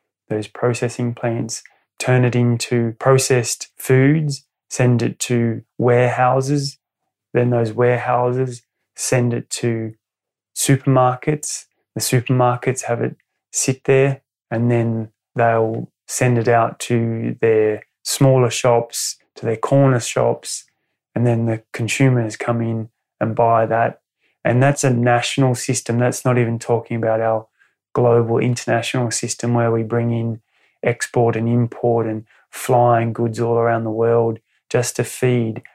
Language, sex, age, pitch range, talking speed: English, male, 20-39, 115-130 Hz, 135 wpm